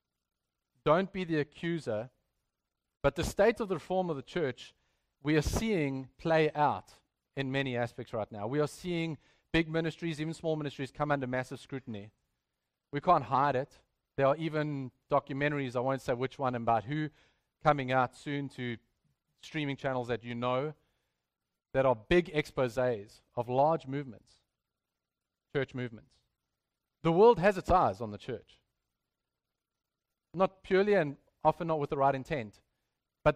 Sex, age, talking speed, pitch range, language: male, 30-49, 155 wpm, 120-155 Hz, English